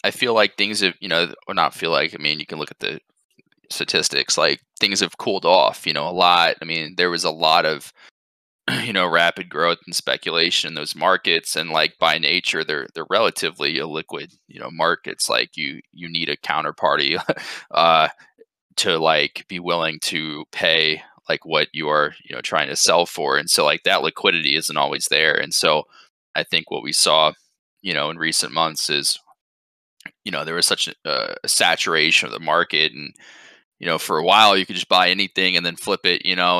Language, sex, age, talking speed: English, male, 20-39, 210 wpm